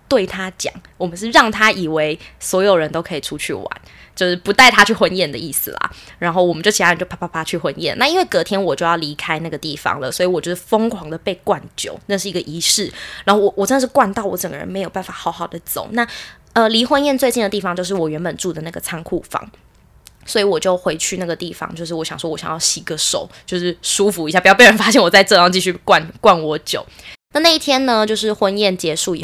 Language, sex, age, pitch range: Chinese, female, 20-39, 175-235 Hz